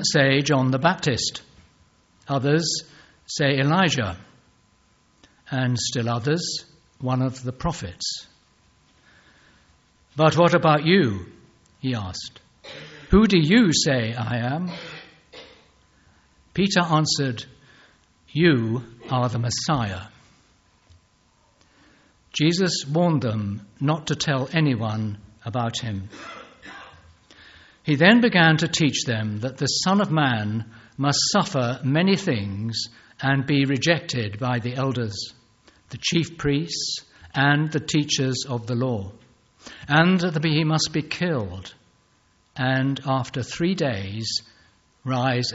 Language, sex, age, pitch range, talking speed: English, male, 60-79, 110-155 Hz, 110 wpm